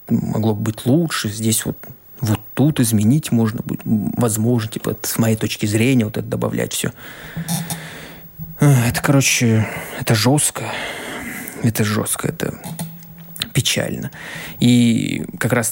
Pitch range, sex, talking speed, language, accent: 110-135 Hz, male, 120 wpm, Russian, native